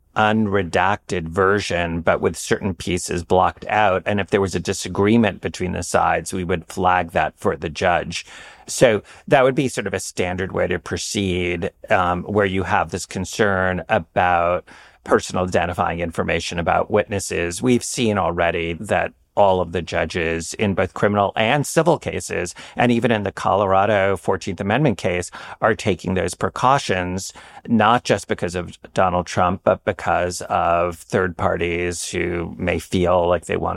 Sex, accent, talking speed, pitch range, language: male, American, 160 wpm, 90-110 Hz, English